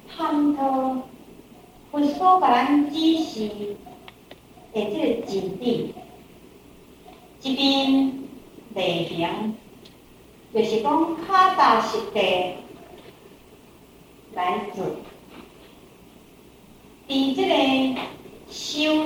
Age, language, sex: 50-69, Chinese, female